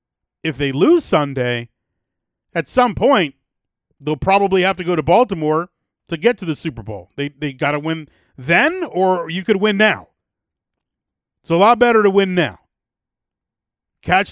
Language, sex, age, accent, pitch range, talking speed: English, male, 40-59, American, 145-195 Hz, 165 wpm